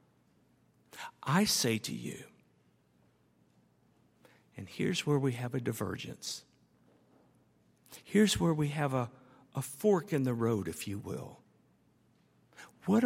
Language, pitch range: English, 130-200 Hz